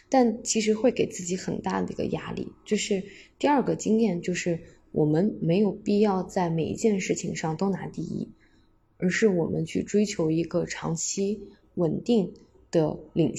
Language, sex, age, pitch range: Chinese, female, 20-39, 160-195 Hz